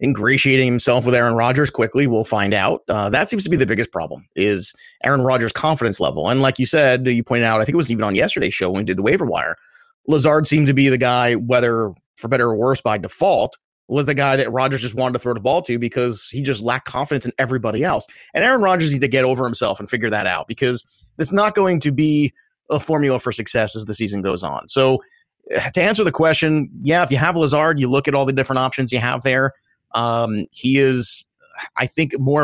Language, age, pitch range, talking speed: English, 30-49, 120-145 Hz, 240 wpm